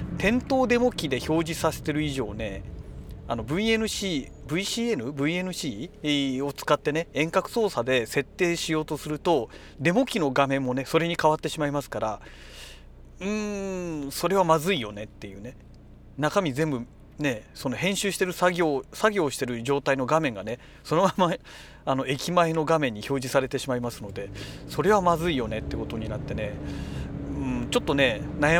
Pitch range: 130-175 Hz